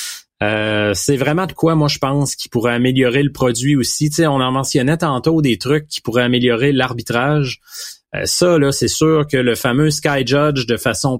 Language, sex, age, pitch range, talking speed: French, male, 30-49, 120-150 Hz, 205 wpm